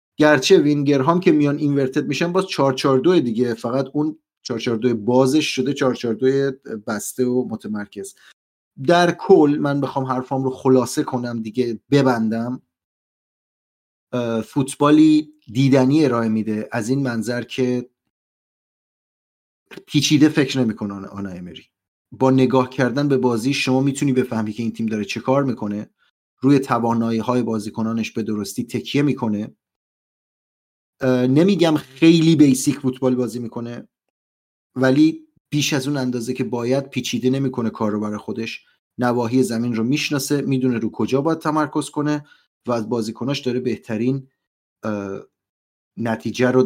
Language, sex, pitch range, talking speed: Persian, male, 115-140 Hz, 130 wpm